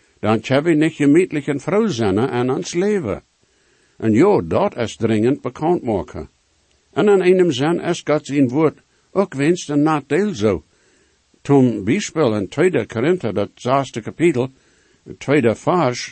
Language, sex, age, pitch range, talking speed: English, male, 60-79, 110-155 Hz, 140 wpm